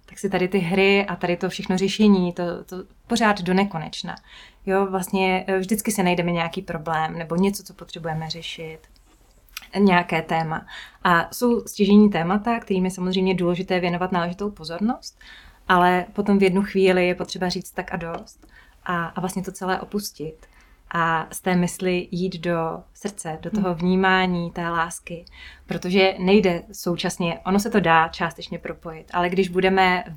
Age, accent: 20-39, native